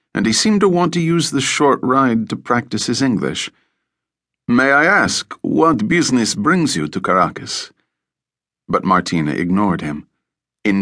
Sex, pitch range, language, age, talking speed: male, 85-110 Hz, English, 50-69, 155 wpm